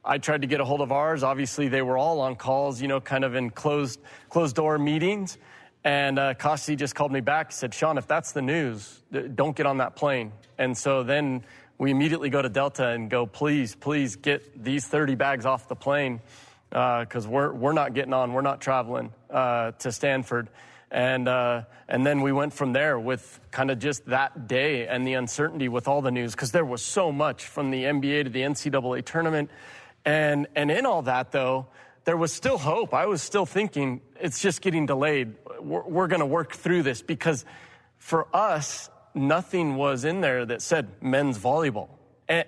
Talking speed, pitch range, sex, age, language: 205 wpm, 125-150 Hz, male, 30-49, English